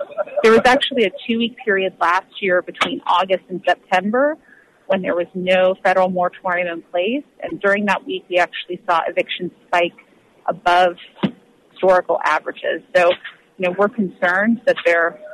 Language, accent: English, American